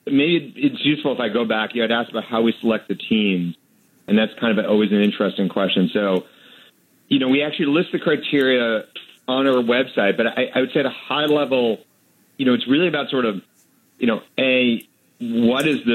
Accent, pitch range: American, 100-130 Hz